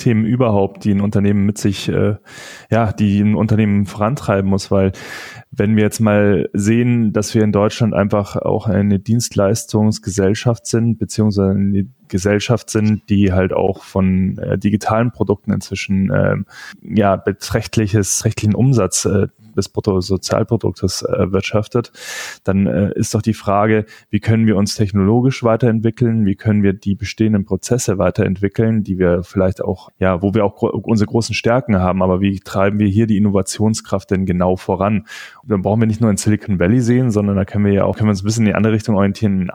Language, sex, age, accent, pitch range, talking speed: German, male, 20-39, German, 100-110 Hz, 180 wpm